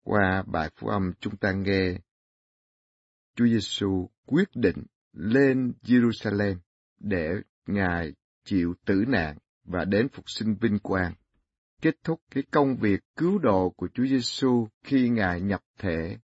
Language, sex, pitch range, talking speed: Vietnamese, male, 90-125 Hz, 145 wpm